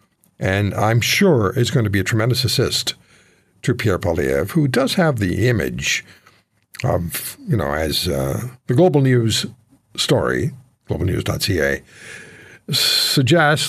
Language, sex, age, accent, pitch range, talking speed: English, male, 60-79, American, 115-155 Hz, 125 wpm